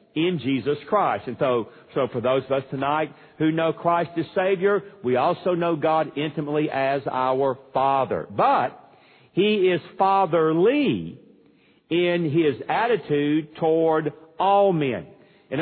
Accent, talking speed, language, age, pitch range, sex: American, 135 wpm, English, 50-69, 135-180 Hz, male